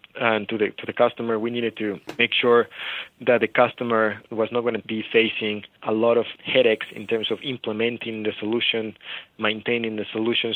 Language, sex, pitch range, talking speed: English, male, 105-120 Hz, 190 wpm